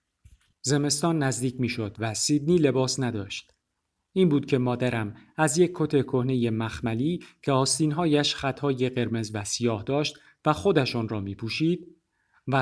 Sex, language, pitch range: male, Persian, 115-150 Hz